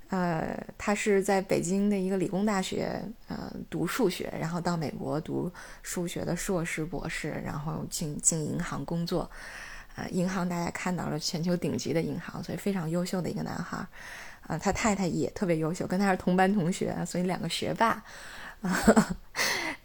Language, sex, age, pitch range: Chinese, female, 20-39, 180-210 Hz